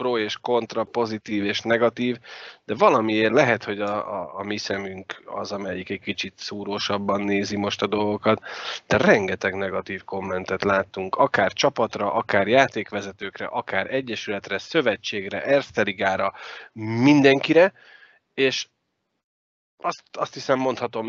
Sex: male